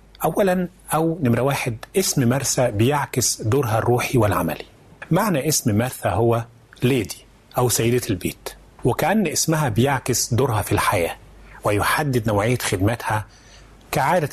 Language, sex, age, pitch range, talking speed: Arabic, male, 30-49, 110-140 Hz, 115 wpm